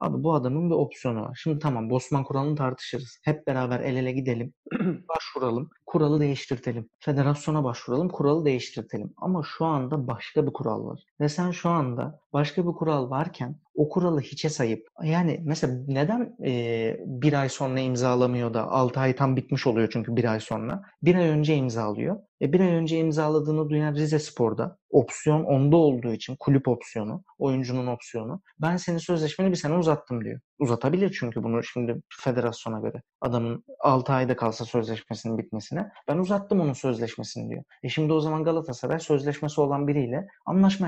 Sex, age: male, 30-49